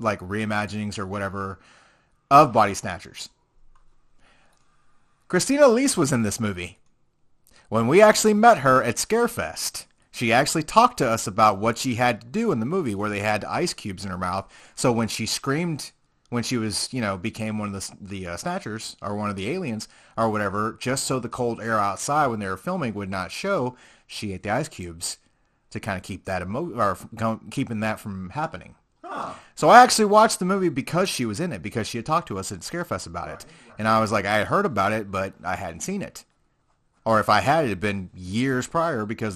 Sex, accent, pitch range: male, American, 105-145 Hz